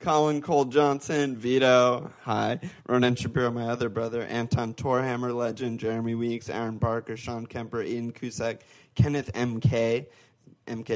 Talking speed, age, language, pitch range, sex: 130 wpm, 20-39, English, 115-130 Hz, male